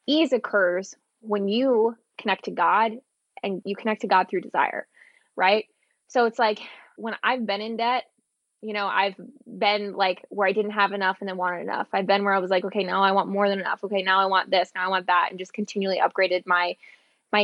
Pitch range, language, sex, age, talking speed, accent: 195-235 Hz, English, female, 20-39, 225 wpm, American